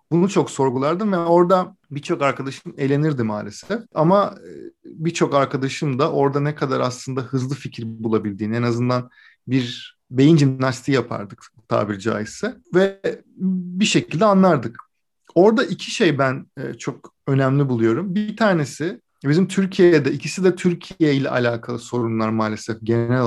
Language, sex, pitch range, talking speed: Turkish, male, 125-155 Hz, 130 wpm